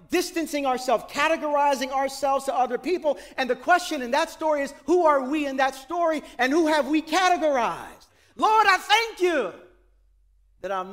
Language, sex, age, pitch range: English, male, 40-59, 205-290 Hz